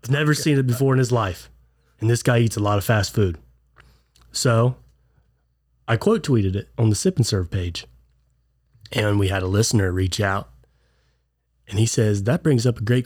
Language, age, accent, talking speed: English, 30-49, American, 200 wpm